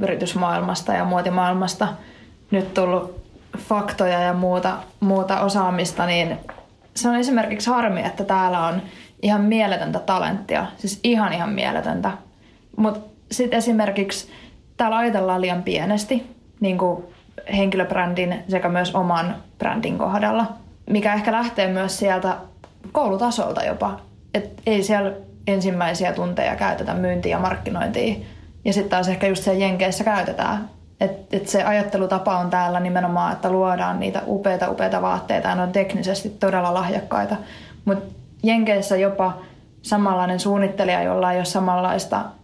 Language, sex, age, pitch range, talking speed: Finnish, female, 20-39, 185-210 Hz, 130 wpm